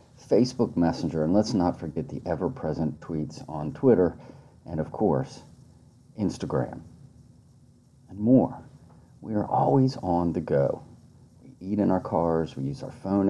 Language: English